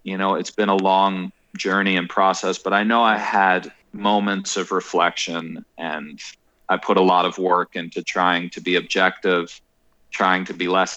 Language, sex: English, male